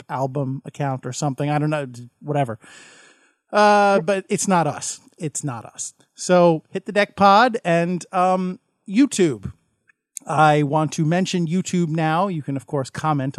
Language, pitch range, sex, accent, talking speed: English, 150-195 Hz, male, American, 155 wpm